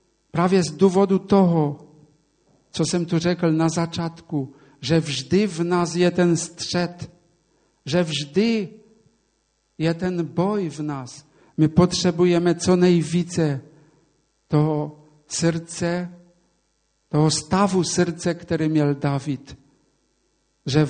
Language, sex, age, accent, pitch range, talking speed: Czech, male, 50-69, Polish, 155-180 Hz, 100 wpm